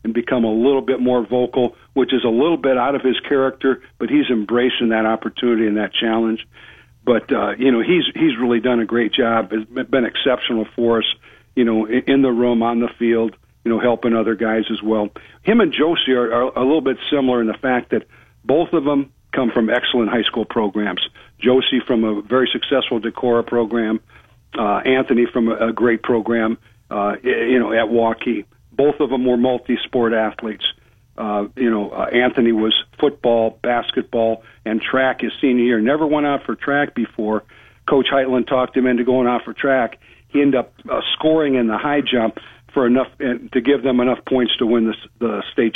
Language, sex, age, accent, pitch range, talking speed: English, male, 50-69, American, 115-130 Hz, 200 wpm